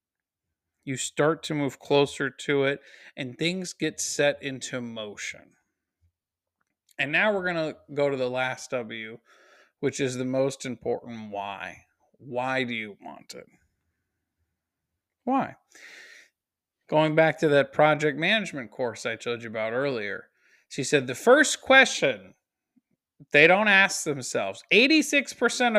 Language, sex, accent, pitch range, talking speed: English, male, American, 120-190 Hz, 135 wpm